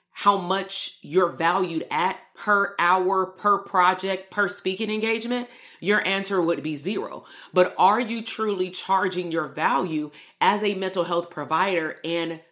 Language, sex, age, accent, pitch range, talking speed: English, female, 30-49, American, 175-210 Hz, 145 wpm